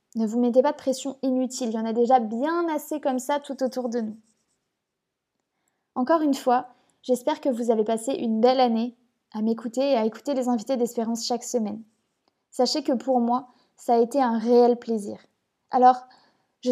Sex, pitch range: female, 230-270 Hz